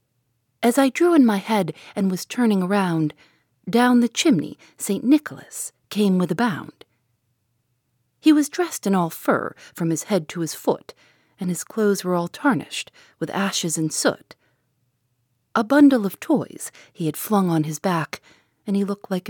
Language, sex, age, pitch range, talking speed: English, female, 40-59, 130-215 Hz, 170 wpm